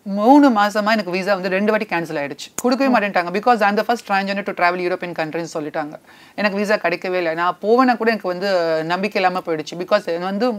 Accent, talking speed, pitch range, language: native, 215 wpm, 175-220 Hz, Tamil